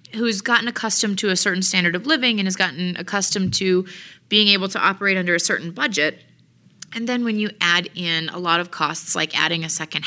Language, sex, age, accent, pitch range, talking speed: English, female, 30-49, American, 175-210 Hz, 215 wpm